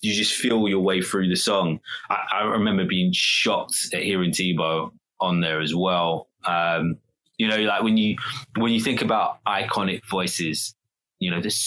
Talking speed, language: 180 wpm, English